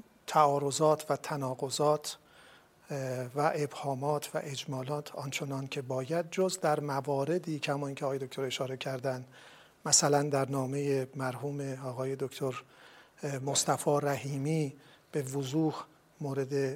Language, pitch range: Persian, 135-155 Hz